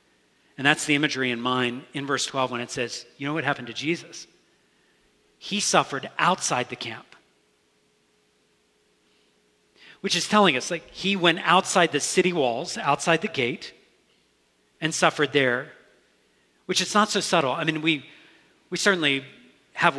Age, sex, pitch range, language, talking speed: 40-59, male, 125-165 Hz, English, 155 wpm